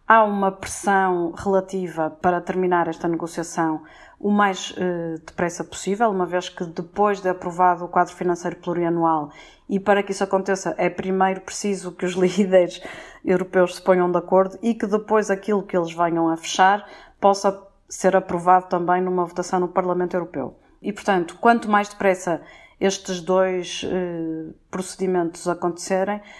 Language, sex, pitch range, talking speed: Portuguese, female, 175-195 Hz, 150 wpm